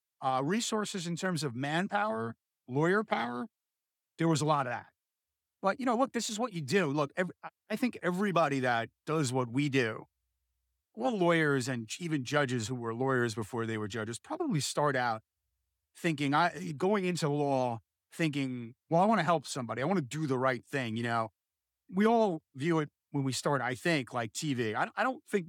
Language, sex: English, male